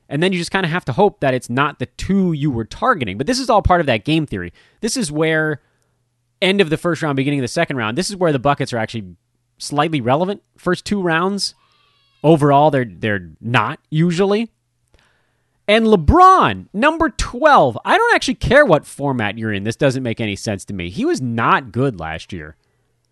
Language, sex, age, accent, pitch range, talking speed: English, male, 30-49, American, 120-190 Hz, 210 wpm